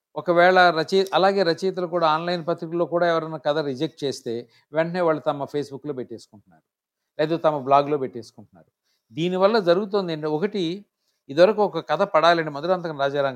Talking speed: 140 wpm